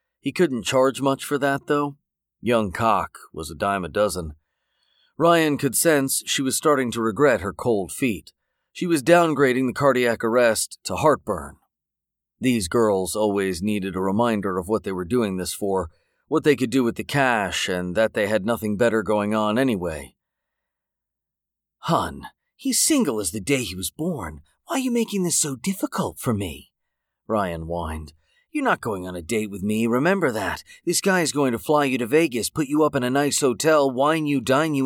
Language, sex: English, male